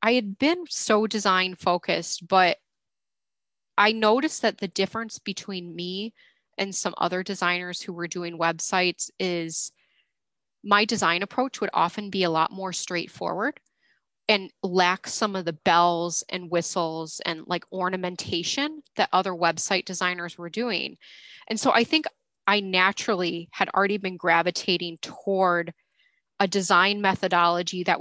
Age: 20-39